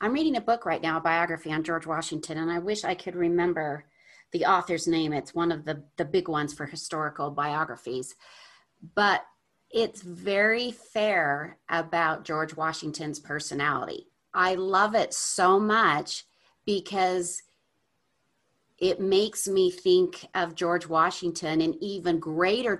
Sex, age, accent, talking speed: female, 40-59, American, 140 wpm